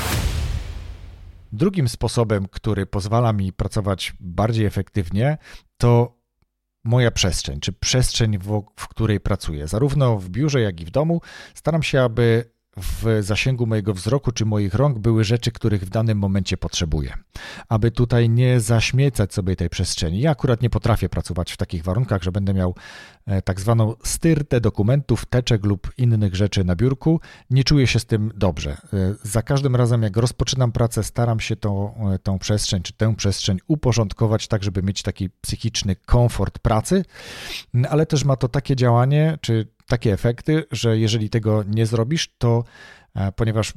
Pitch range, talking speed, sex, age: 100-120 Hz, 155 wpm, male, 40-59